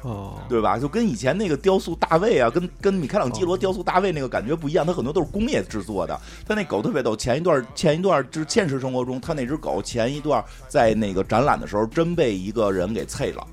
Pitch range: 110-165 Hz